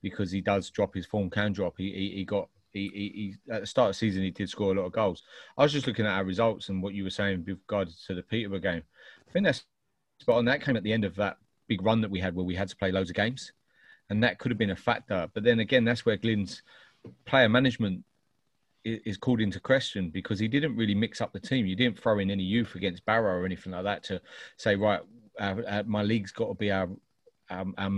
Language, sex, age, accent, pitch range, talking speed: English, male, 30-49, British, 95-110 Hz, 260 wpm